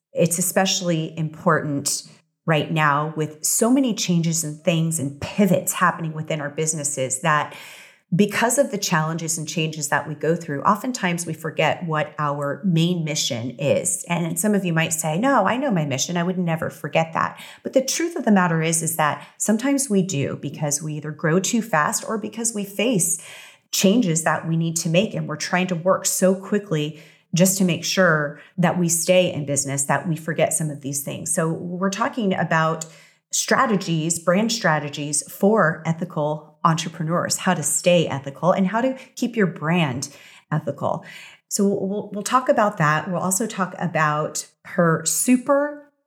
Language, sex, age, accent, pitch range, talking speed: English, female, 30-49, American, 155-195 Hz, 175 wpm